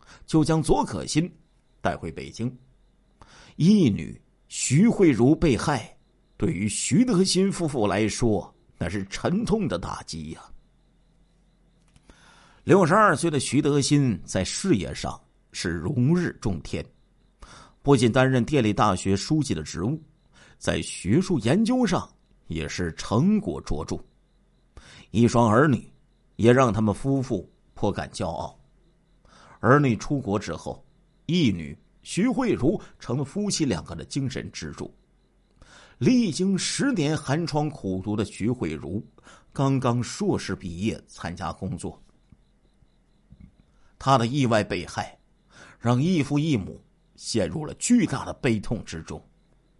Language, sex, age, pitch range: Chinese, male, 50-69, 100-155 Hz